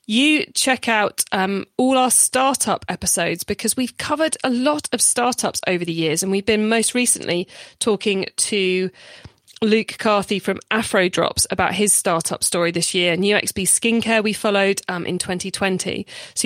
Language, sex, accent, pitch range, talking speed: English, female, British, 185-235 Hz, 160 wpm